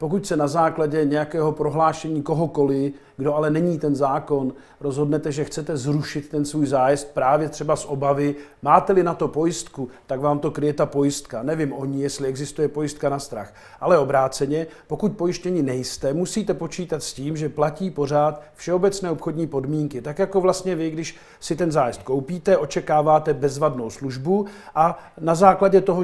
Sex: male